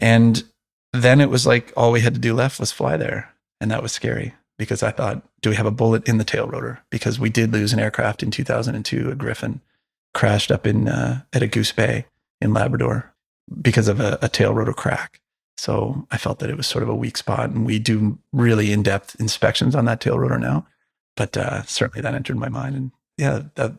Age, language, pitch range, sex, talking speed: 30-49, English, 110-130 Hz, male, 225 wpm